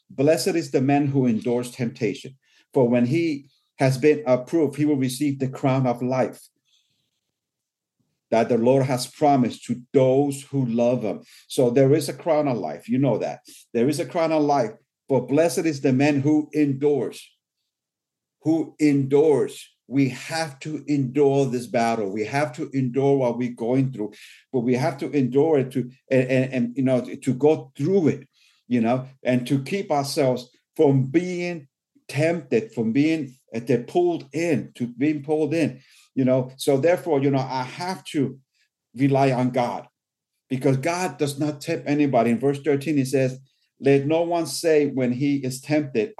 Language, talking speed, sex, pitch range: English, 175 wpm, male, 130-150 Hz